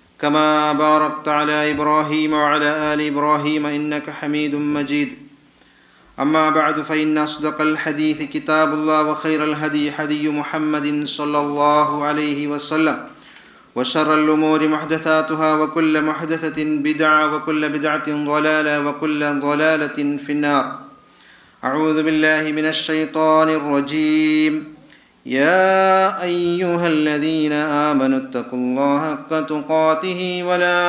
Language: Kannada